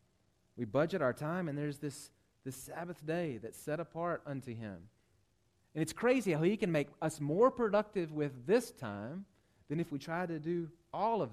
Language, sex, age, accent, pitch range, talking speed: English, male, 30-49, American, 115-150 Hz, 190 wpm